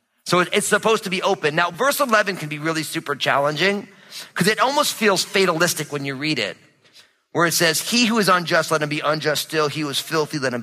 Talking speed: 230 wpm